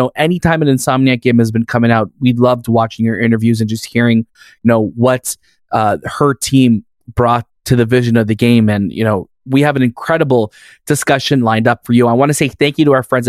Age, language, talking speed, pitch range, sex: 20-39, English, 225 wpm, 120-145 Hz, male